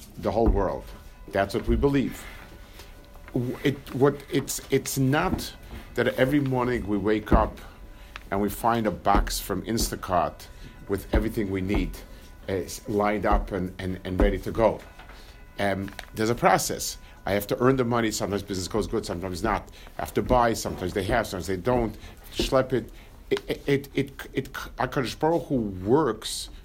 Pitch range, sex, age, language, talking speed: 95-130 Hz, male, 50-69, English, 170 wpm